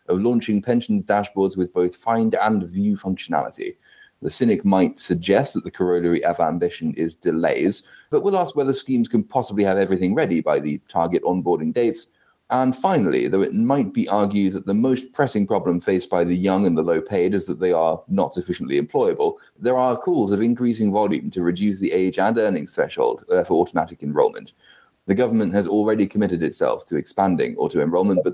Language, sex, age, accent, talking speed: English, male, 30-49, British, 195 wpm